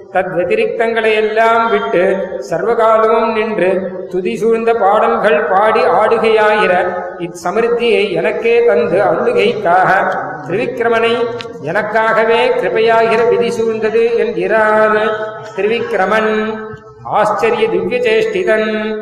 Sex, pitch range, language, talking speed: male, 200-225 Hz, Tamil, 65 wpm